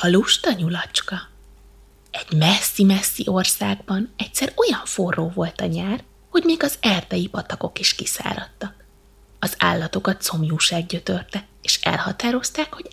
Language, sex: Hungarian, female